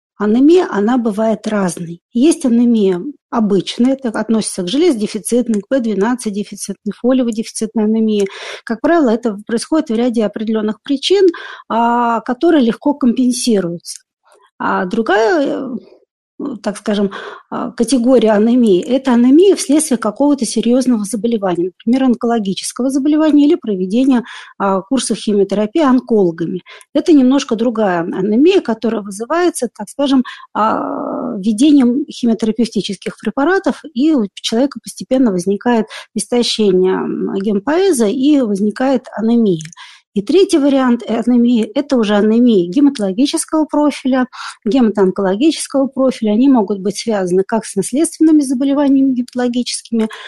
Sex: female